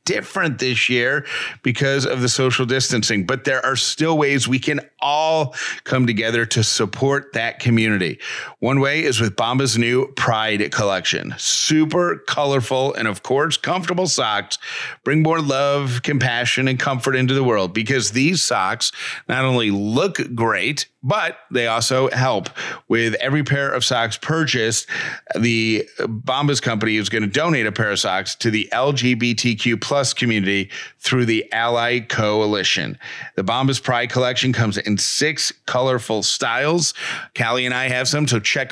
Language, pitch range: English, 110-130 Hz